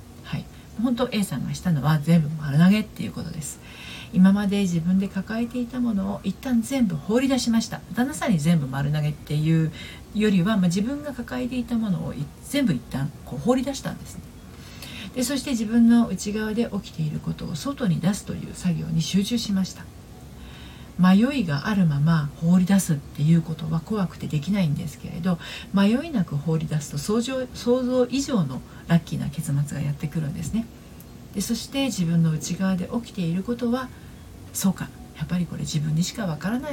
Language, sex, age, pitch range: Japanese, female, 40-59, 155-215 Hz